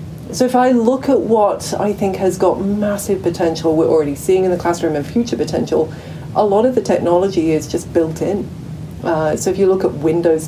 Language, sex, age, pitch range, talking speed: English, female, 40-59, 160-190 Hz, 210 wpm